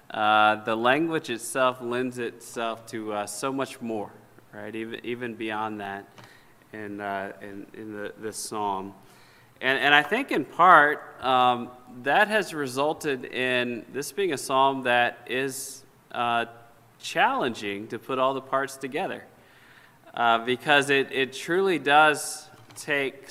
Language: English